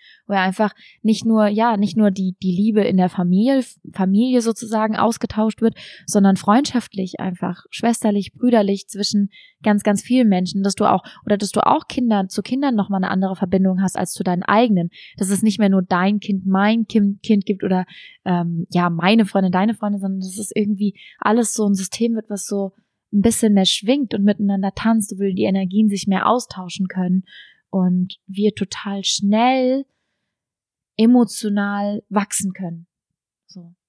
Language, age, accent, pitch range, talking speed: German, 20-39, German, 195-225 Hz, 170 wpm